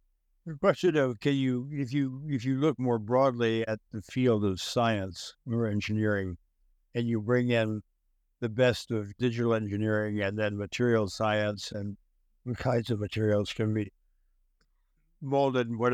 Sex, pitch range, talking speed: male, 95-125 Hz, 160 wpm